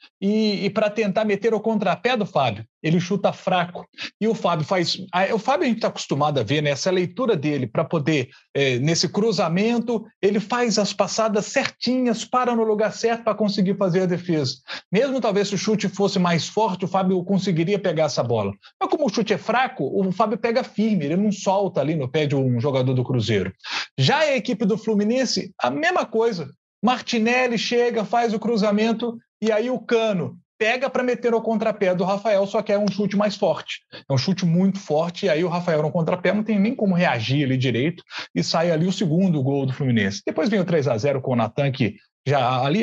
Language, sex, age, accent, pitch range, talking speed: Portuguese, male, 40-59, Brazilian, 155-220 Hz, 210 wpm